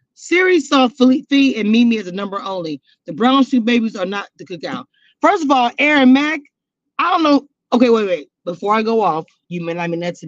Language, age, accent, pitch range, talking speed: English, 30-49, American, 205-275 Hz, 220 wpm